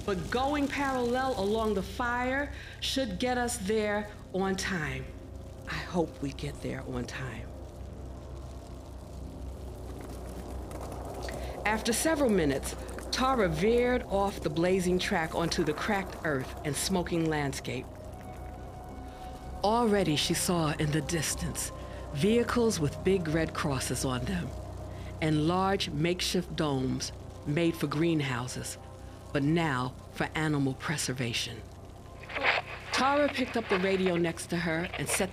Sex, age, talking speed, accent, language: female, 50-69, 120 wpm, American, English